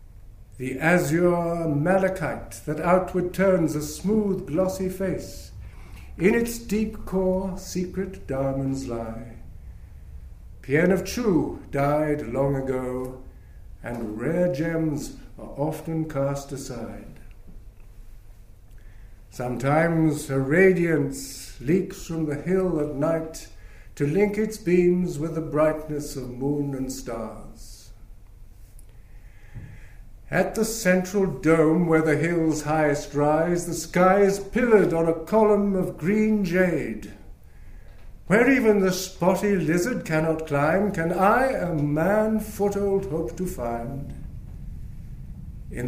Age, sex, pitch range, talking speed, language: 60-79, male, 115-180 Hz, 110 wpm, English